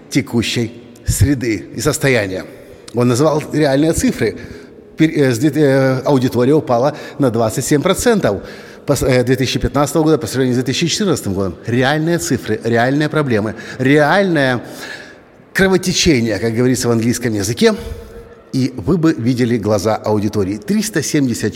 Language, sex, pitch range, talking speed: Russian, male, 115-150 Hz, 105 wpm